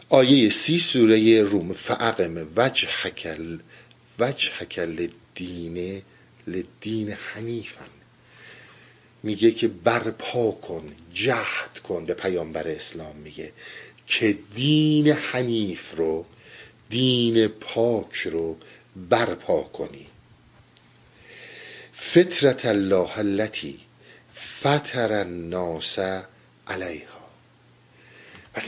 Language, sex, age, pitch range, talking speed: Persian, male, 50-69, 100-130 Hz, 75 wpm